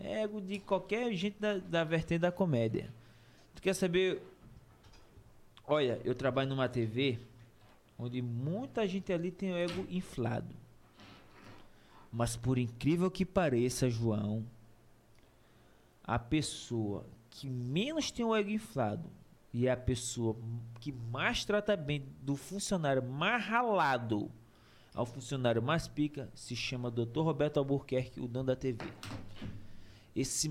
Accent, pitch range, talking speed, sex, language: Brazilian, 115-155 Hz, 125 wpm, male, Portuguese